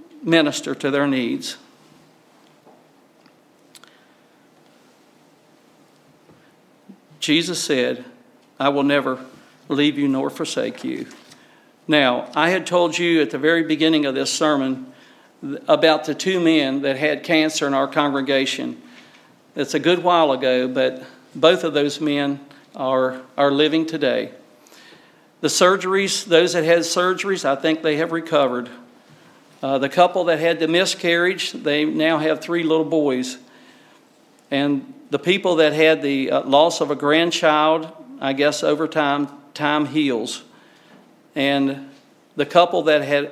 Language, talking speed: English, 135 wpm